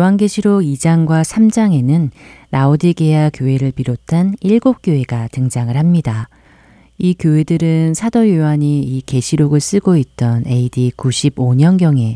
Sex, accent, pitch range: female, native, 125-165 Hz